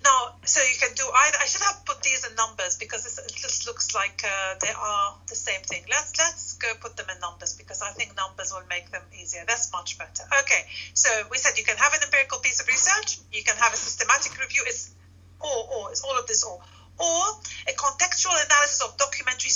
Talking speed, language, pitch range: 235 wpm, English, 190-290 Hz